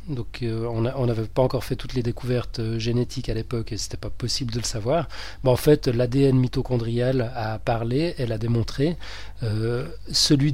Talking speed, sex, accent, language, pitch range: 190 wpm, male, French, French, 115-140 Hz